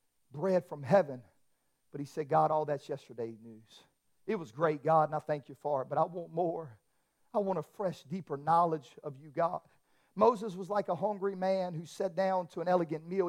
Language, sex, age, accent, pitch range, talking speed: English, male, 50-69, American, 150-205 Hz, 210 wpm